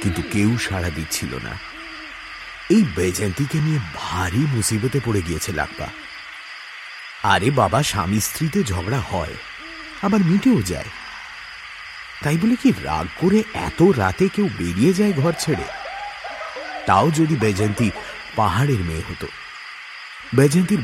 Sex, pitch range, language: male, 95-145 Hz, English